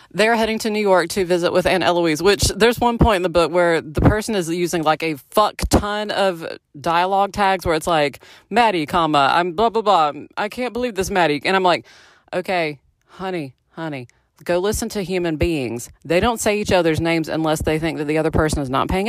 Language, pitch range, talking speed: English, 160-205 Hz, 220 wpm